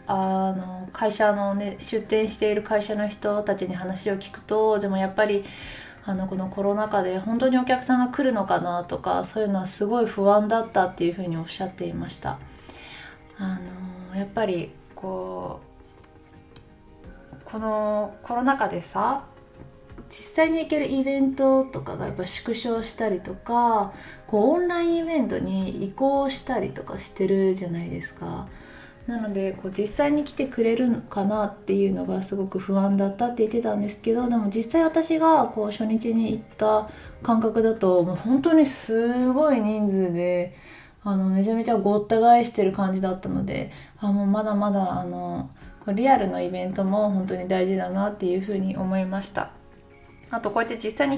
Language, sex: Japanese, female